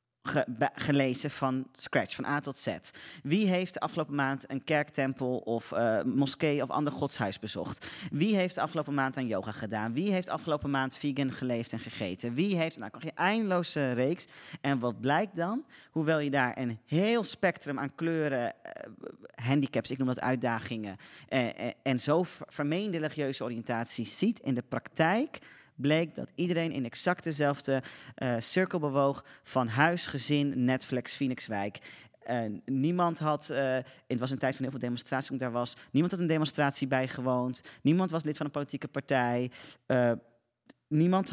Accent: Dutch